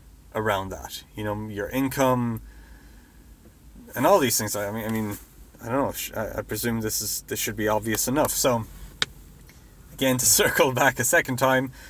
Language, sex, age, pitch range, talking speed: English, male, 30-49, 95-125 Hz, 175 wpm